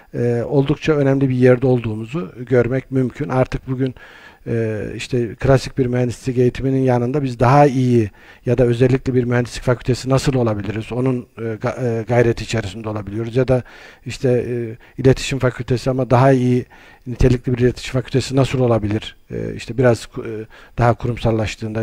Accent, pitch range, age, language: native, 115-130 Hz, 50-69, Turkish